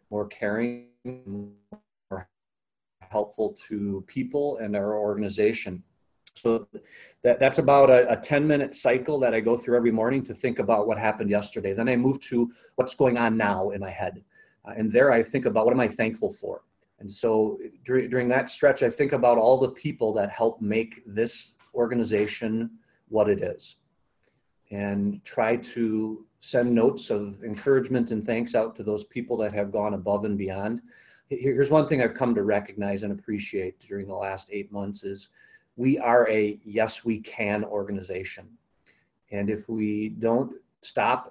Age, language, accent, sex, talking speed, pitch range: 40-59, English, American, male, 170 wpm, 105-120 Hz